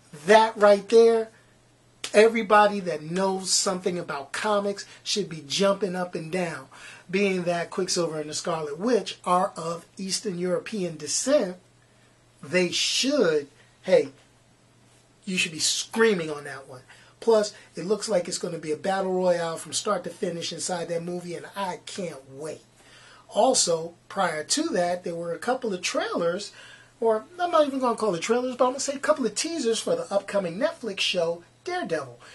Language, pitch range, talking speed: English, 170-220 Hz, 175 wpm